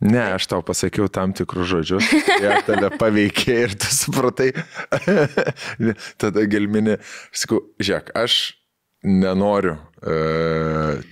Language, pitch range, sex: English, 85-125 Hz, male